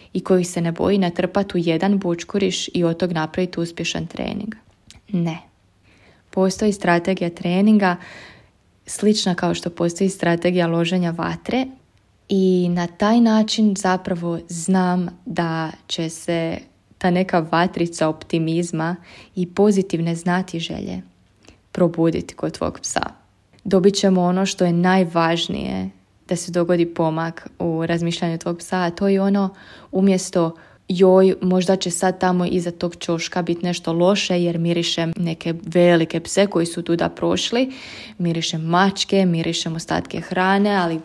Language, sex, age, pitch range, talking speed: Croatian, female, 20-39, 165-190 Hz, 135 wpm